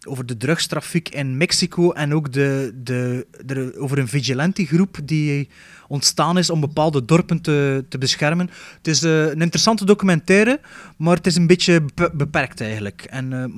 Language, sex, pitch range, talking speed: Dutch, male, 140-175 Hz, 170 wpm